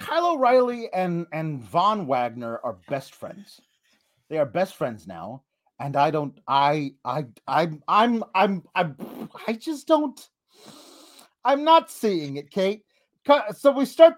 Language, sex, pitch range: English, male, 180-265 Hz